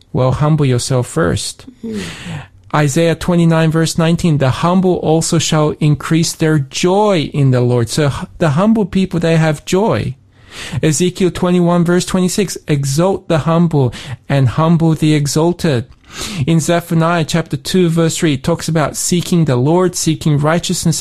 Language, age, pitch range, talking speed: English, 40-59, 145-175 Hz, 145 wpm